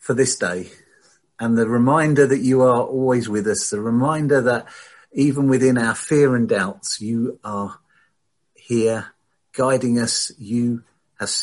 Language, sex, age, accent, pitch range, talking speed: English, male, 50-69, British, 105-130 Hz, 145 wpm